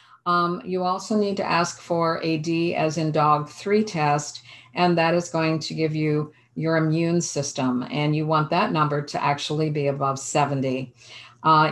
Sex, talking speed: female, 180 wpm